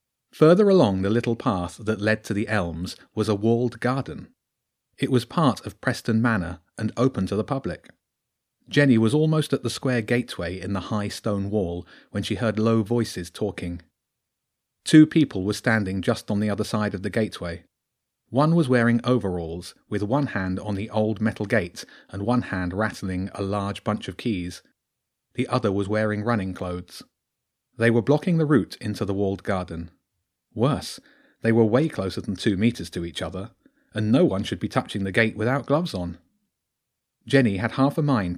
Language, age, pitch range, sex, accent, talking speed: English, 30-49, 95-120 Hz, male, British, 185 wpm